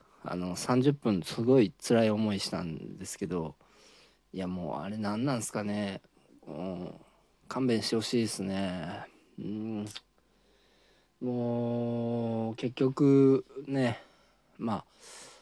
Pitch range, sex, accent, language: 95-140 Hz, male, native, Japanese